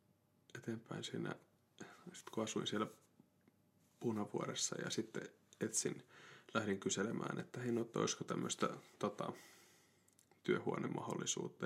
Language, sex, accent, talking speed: Finnish, male, native, 70 wpm